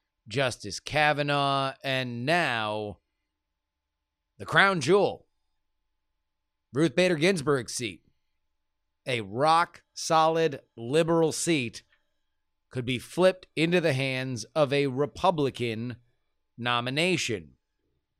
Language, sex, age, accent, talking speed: English, male, 30-49, American, 80 wpm